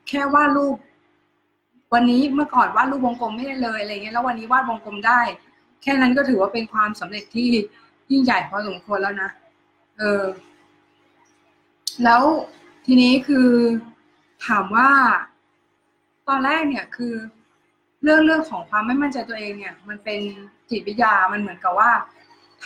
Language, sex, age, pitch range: Thai, female, 20-39, 210-275 Hz